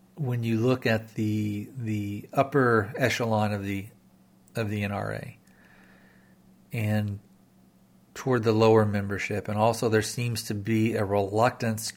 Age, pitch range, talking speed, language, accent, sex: 40-59, 100-115 Hz, 130 wpm, English, American, male